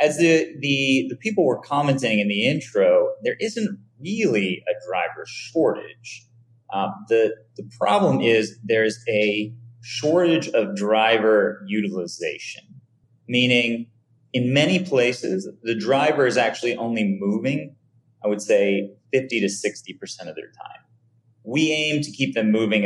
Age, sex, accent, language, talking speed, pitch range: 30-49, male, American, English, 135 wpm, 110-150 Hz